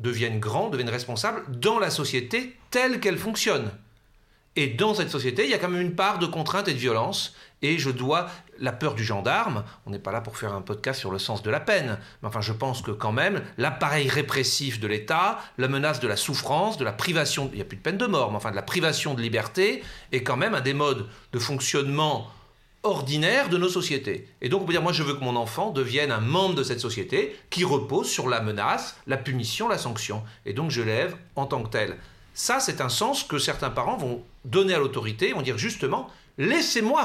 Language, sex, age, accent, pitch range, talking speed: French, male, 40-59, French, 115-170 Hz, 235 wpm